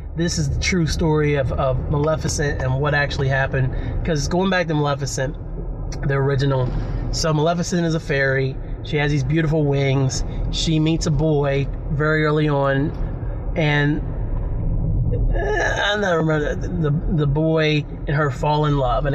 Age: 30-49